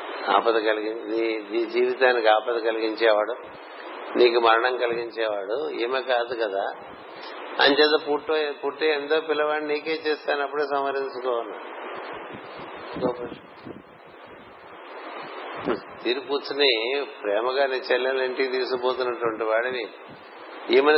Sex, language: male, Telugu